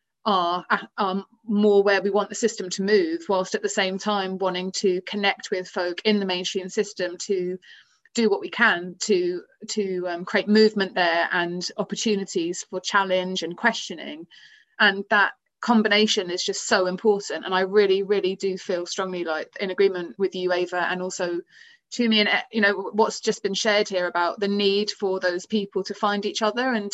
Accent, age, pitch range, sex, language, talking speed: British, 30-49, 190-225 Hz, female, English, 185 wpm